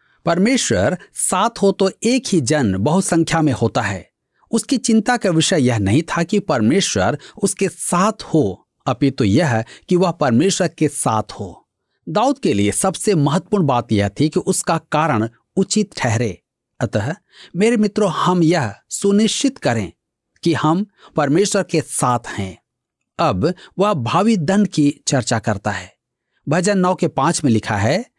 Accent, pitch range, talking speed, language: native, 120-190 Hz, 160 wpm, Hindi